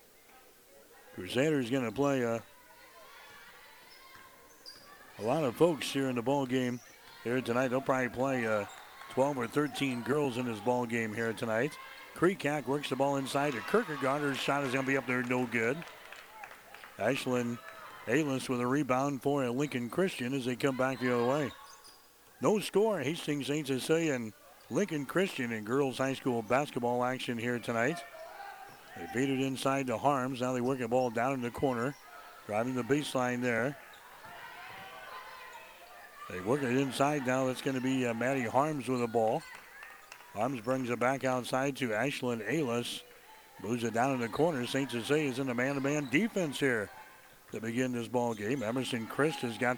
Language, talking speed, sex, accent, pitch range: English, 170 wpm, male, American, 120-140 Hz